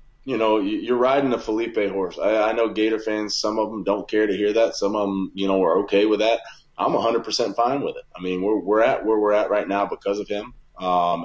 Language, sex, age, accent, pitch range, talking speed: English, male, 30-49, American, 95-110 Hz, 250 wpm